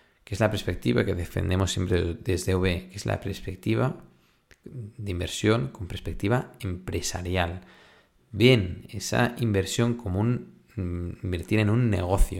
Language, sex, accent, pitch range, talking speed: Spanish, male, Spanish, 90-110 Hz, 135 wpm